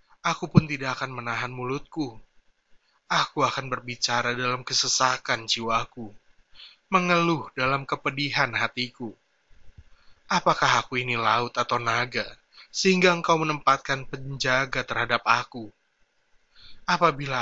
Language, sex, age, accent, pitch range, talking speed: Indonesian, male, 20-39, native, 120-145 Hz, 100 wpm